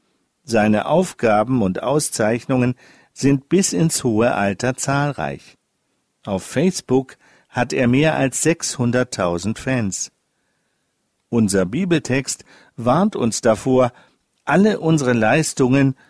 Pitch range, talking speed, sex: 110-145 Hz, 95 wpm, male